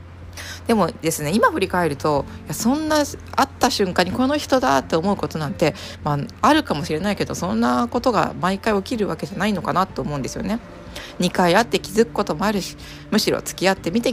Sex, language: female, Japanese